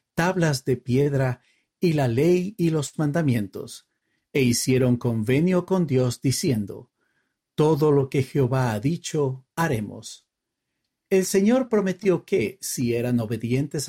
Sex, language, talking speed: male, Spanish, 125 wpm